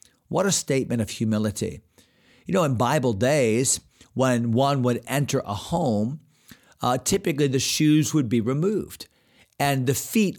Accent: American